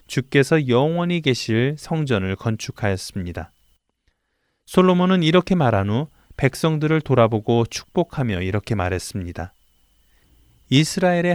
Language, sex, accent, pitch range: Korean, male, native, 100-150 Hz